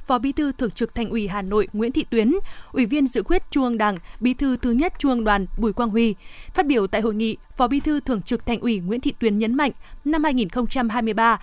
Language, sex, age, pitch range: Vietnamese, female, 20-39, 220-265 Hz